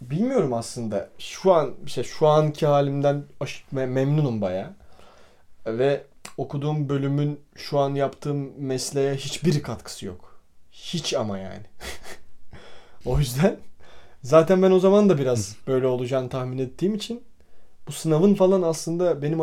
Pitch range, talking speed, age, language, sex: 120-160 Hz, 125 wpm, 30-49, Turkish, male